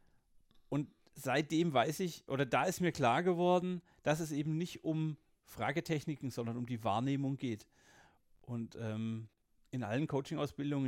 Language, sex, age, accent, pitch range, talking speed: German, male, 40-59, German, 125-160 Hz, 145 wpm